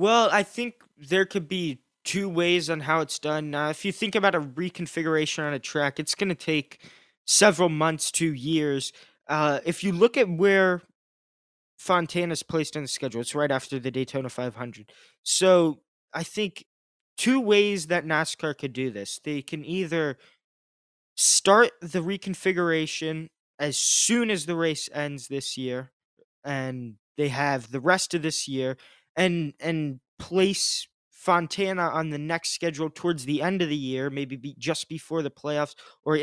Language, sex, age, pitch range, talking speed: English, male, 20-39, 140-170 Hz, 165 wpm